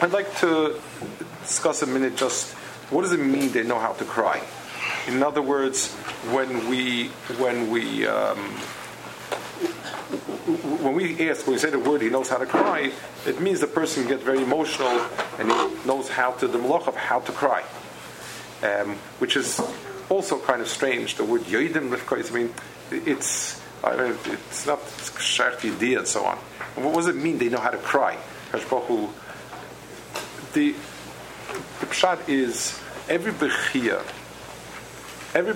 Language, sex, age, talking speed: English, male, 40-59, 150 wpm